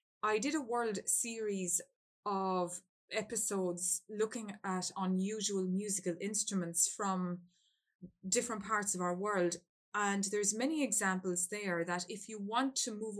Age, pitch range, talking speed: 20-39, 180-220 Hz, 130 wpm